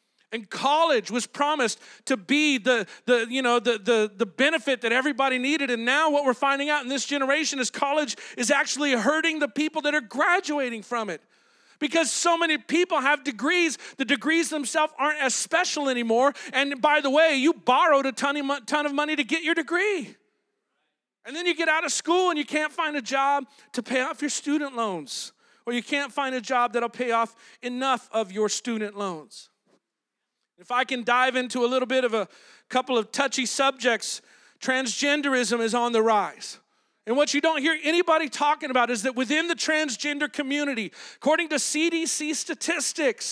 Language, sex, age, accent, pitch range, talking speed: English, male, 40-59, American, 245-305 Hz, 190 wpm